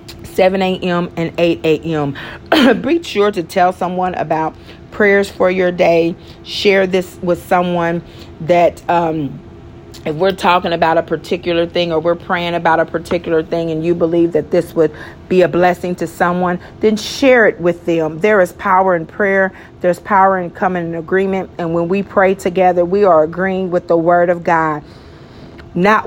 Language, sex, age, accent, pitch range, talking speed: English, female, 40-59, American, 170-195 Hz, 175 wpm